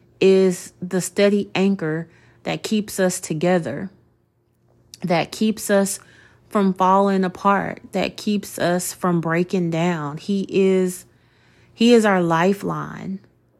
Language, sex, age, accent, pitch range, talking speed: English, female, 30-49, American, 165-200 Hz, 115 wpm